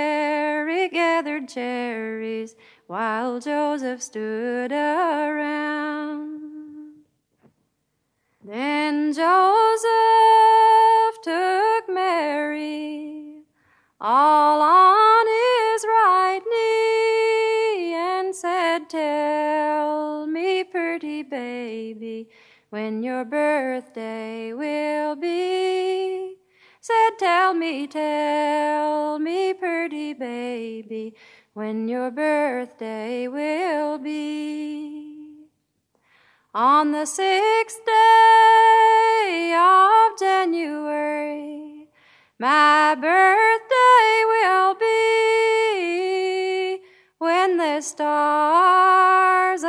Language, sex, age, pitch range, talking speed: English, female, 20-39, 295-375 Hz, 60 wpm